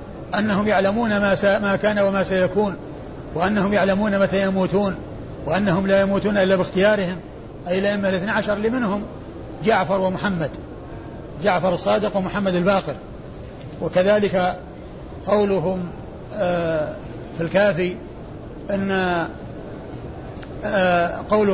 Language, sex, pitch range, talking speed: Arabic, male, 180-210 Hz, 90 wpm